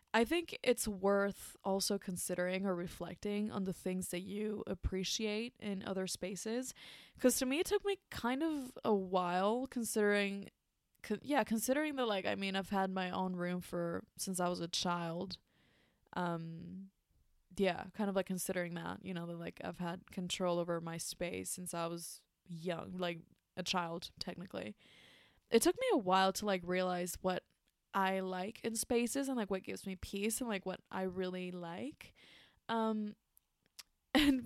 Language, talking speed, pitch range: English, 165 wpm, 180-220 Hz